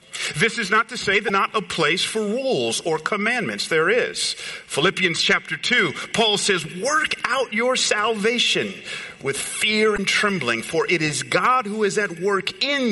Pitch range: 180-235 Hz